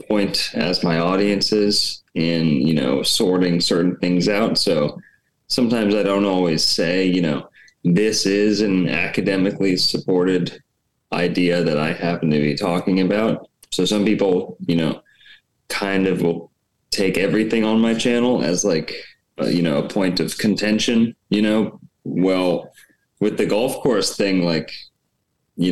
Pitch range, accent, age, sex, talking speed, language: 85-105 Hz, American, 20-39, male, 150 wpm, English